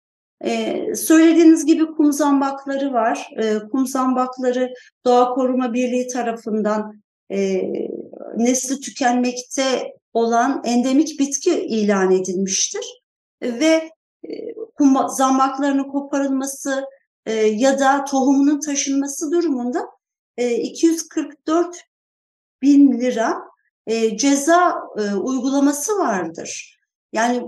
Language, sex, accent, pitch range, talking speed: Turkish, female, native, 235-295 Hz, 85 wpm